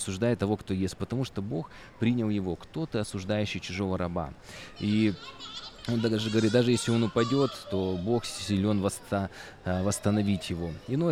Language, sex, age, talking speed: Russian, male, 20-39, 145 wpm